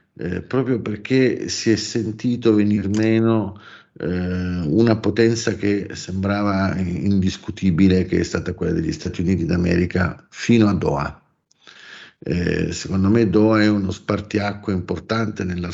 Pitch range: 95-110 Hz